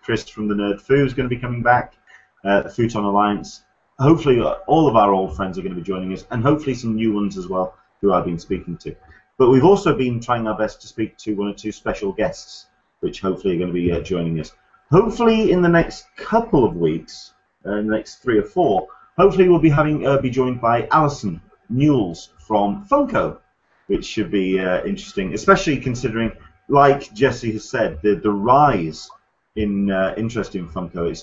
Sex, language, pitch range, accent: male, English, 95-135 Hz, British